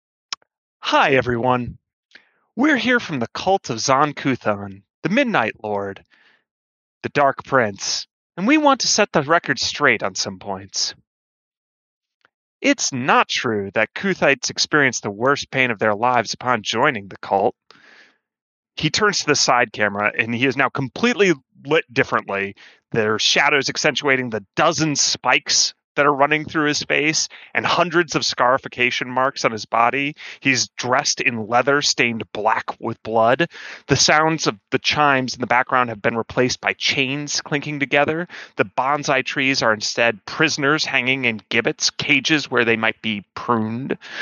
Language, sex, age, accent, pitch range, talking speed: English, male, 30-49, American, 110-150 Hz, 155 wpm